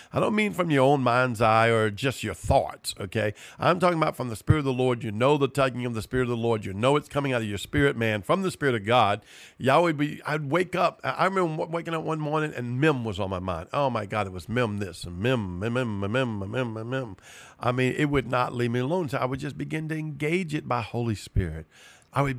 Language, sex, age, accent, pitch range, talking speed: English, male, 50-69, American, 110-135 Hz, 265 wpm